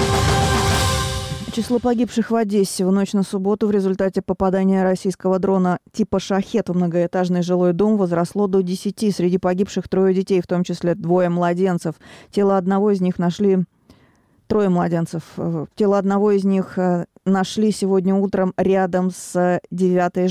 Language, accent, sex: Russian, native, female